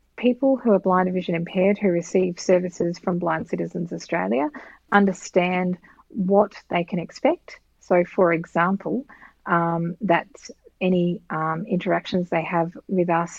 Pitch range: 165-195 Hz